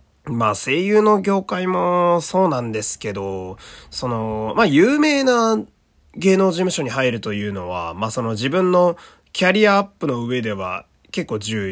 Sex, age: male, 20-39